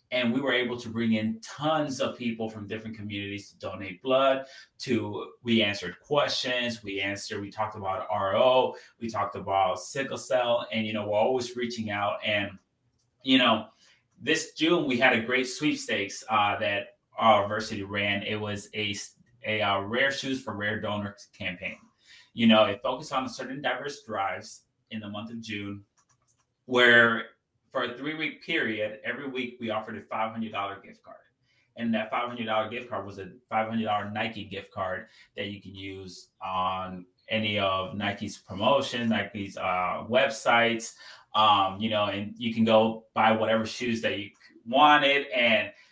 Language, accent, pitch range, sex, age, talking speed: English, American, 105-125 Hz, male, 30-49, 165 wpm